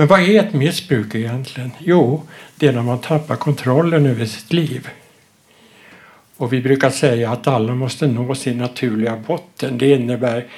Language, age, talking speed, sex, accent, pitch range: Swedish, 60-79, 165 wpm, male, Norwegian, 120-150 Hz